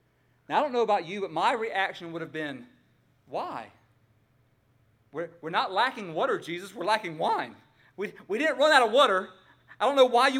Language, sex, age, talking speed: English, male, 40-59, 195 wpm